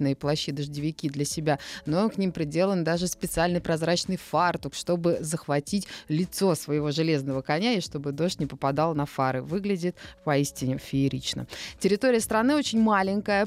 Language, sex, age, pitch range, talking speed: Russian, female, 20-39, 150-200 Hz, 145 wpm